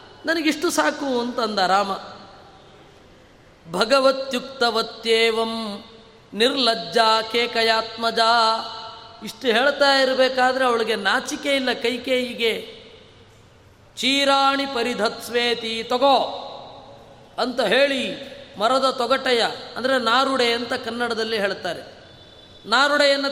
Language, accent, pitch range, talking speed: Kannada, native, 225-265 Hz, 70 wpm